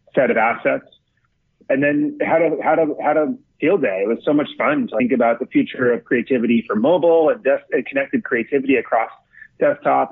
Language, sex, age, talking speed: English, male, 30-49, 200 wpm